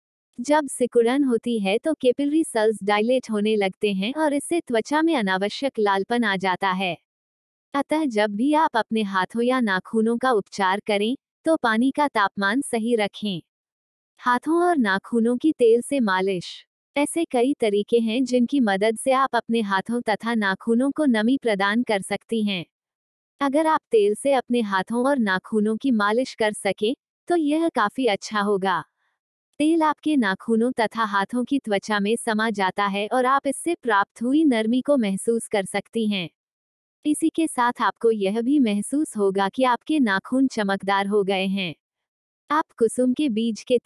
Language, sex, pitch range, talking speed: Hindi, female, 205-270 Hz, 140 wpm